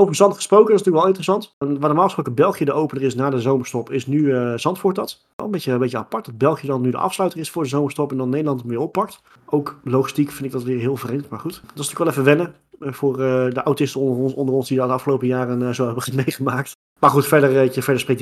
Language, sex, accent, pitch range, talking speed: Dutch, male, Dutch, 125-160 Hz, 280 wpm